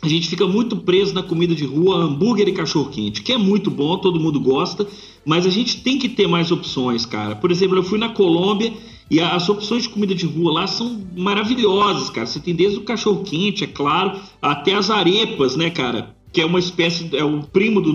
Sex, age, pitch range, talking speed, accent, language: male, 40-59, 155-205 Hz, 215 wpm, Brazilian, Portuguese